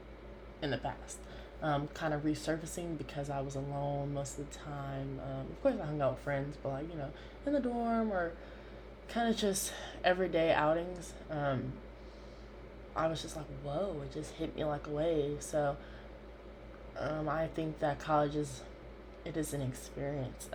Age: 20-39